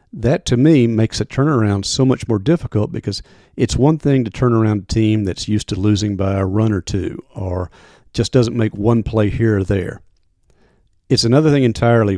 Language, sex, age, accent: English, male, 40-59, American